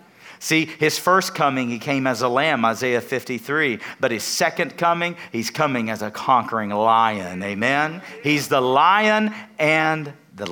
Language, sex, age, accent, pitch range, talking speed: English, male, 40-59, American, 115-180 Hz, 155 wpm